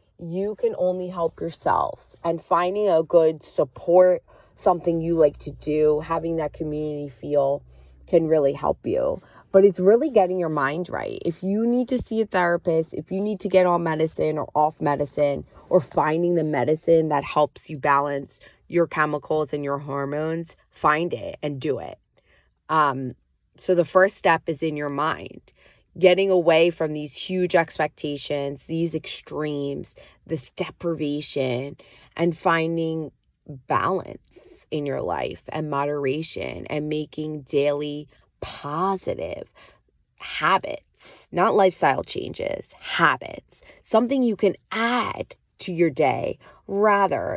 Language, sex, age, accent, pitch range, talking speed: English, female, 20-39, American, 145-175 Hz, 140 wpm